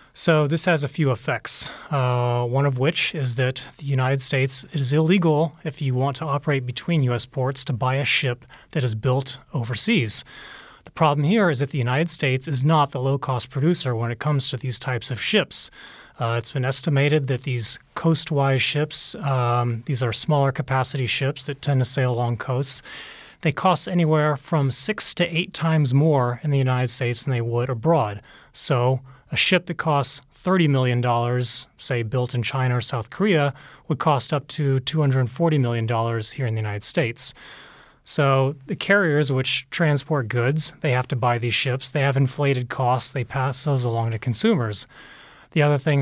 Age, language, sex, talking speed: 30-49, English, male, 185 wpm